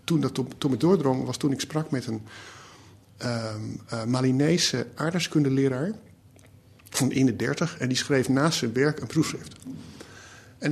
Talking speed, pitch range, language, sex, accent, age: 140 wpm, 115-155 Hz, Dutch, male, Dutch, 50-69